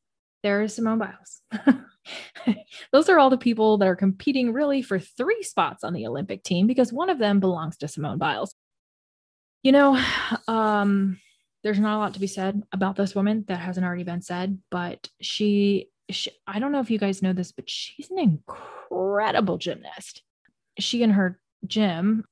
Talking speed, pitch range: 175 wpm, 185-220 Hz